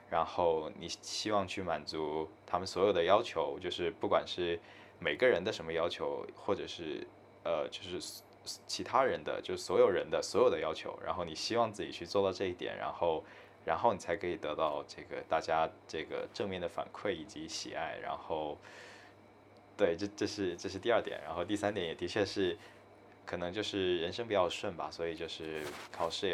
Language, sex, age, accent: English, male, 20-39, Chinese